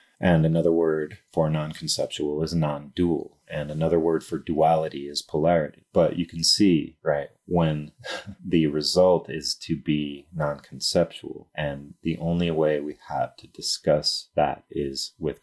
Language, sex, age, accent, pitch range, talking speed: English, male, 30-49, American, 75-85 Hz, 145 wpm